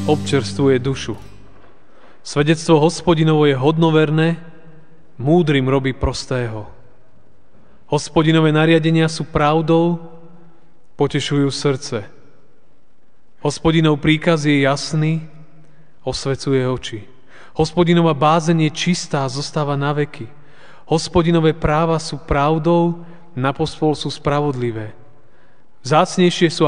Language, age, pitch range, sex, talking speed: Slovak, 30-49, 130-160 Hz, male, 85 wpm